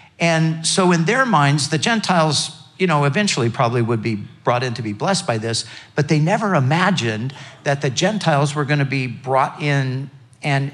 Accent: American